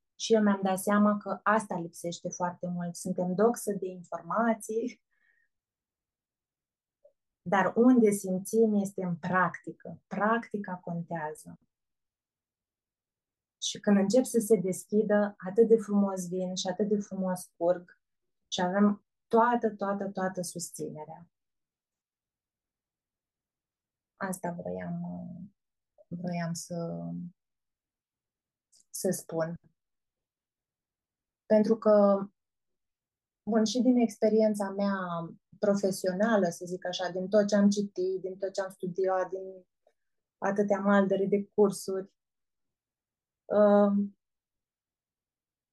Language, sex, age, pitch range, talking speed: Romanian, female, 20-39, 180-215 Hz, 100 wpm